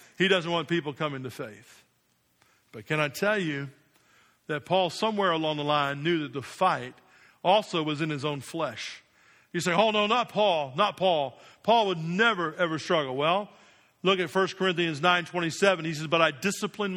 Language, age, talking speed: English, 50-69, 185 wpm